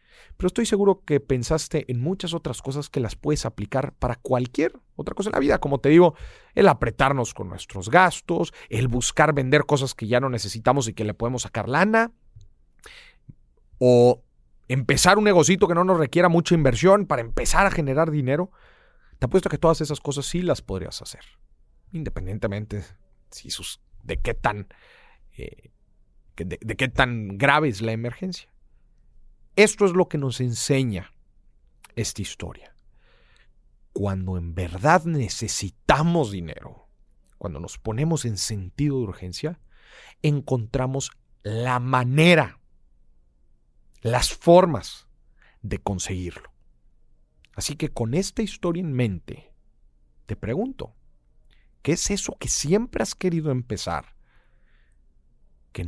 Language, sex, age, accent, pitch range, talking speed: Spanish, male, 40-59, Mexican, 95-155 Hz, 135 wpm